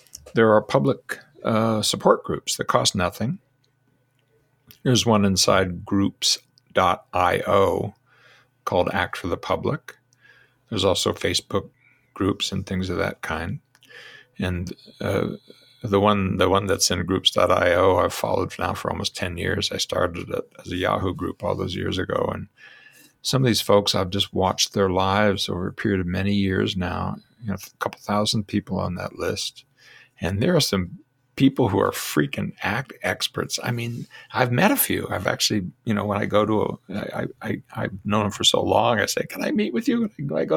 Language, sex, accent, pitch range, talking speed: English, male, American, 100-135 Hz, 180 wpm